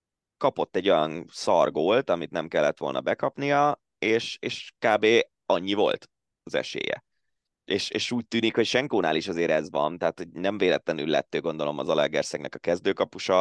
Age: 20-39